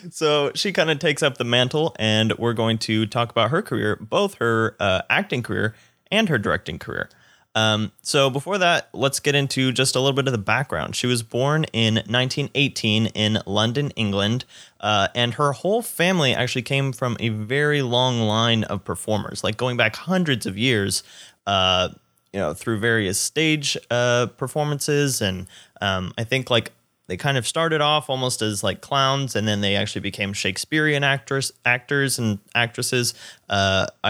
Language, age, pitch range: English, 20-39, 105-135 Hz